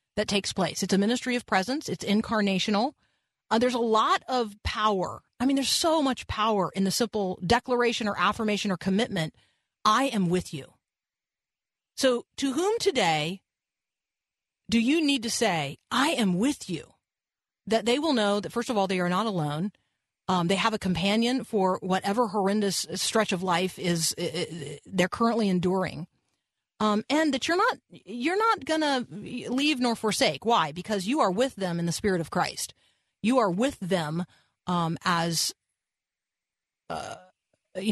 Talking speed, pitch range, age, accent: 170 wpm, 180-240 Hz, 40-59, American